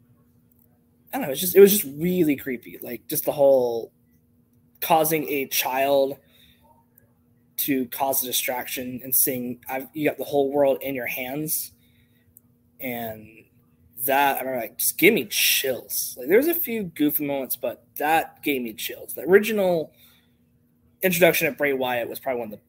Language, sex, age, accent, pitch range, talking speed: English, male, 20-39, American, 125-160 Hz, 165 wpm